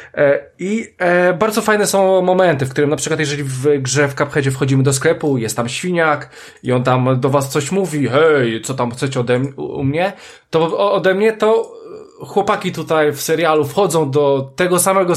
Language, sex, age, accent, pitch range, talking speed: Polish, male, 20-39, native, 135-180 Hz, 185 wpm